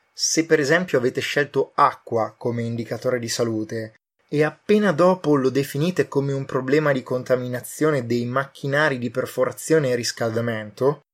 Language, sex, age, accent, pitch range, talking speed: Italian, male, 20-39, native, 115-140 Hz, 140 wpm